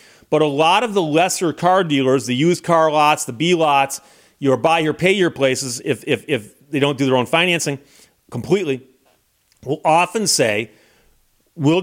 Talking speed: 160 wpm